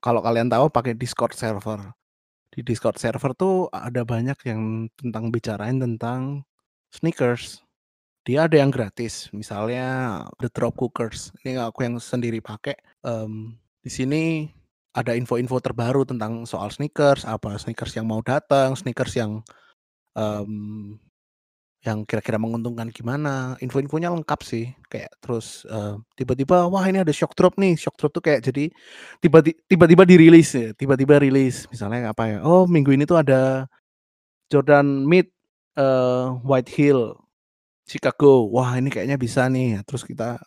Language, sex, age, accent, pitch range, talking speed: Indonesian, male, 20-39, native, 110-140 Hz, 140 wpm